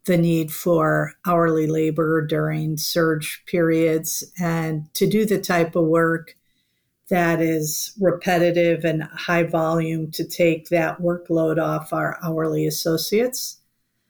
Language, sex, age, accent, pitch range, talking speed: English, female, 50-69, American, 160-180 Hz, 125 wpm